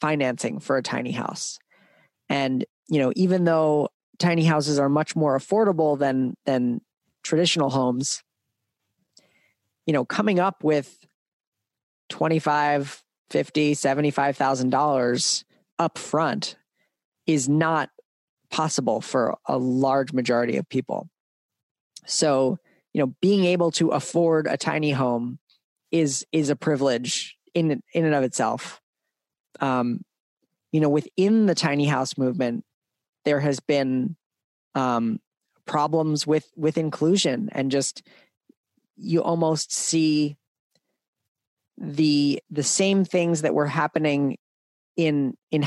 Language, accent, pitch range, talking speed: English, American, 135-160 Hz, 120 wpm